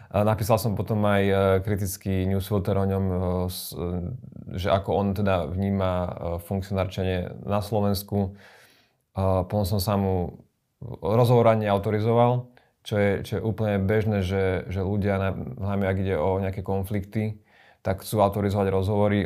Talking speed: 125 wpm